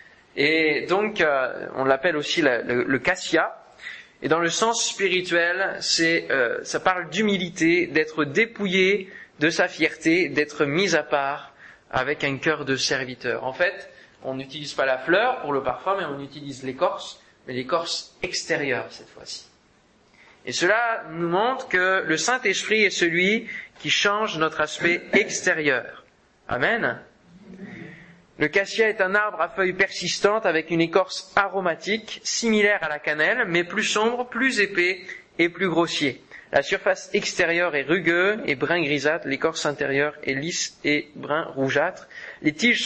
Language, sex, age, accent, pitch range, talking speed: French, male, 20-39, French, 150-200 Hz, 155 wpm